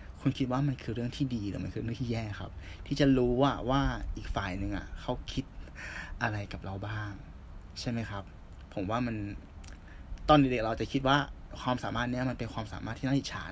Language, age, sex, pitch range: Thai, 20-39, male, 90-130 Hz